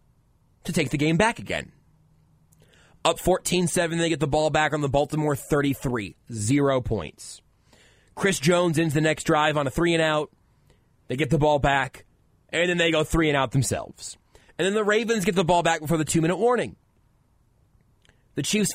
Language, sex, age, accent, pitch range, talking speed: English, male, 30-49, American, 120-165 Hz, 185 wpm